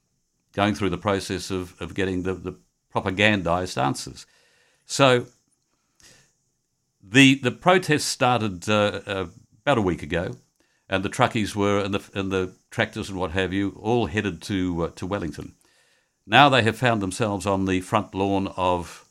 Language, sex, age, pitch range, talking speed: English, male, 50-69, 90-120 Hz, 155 wpm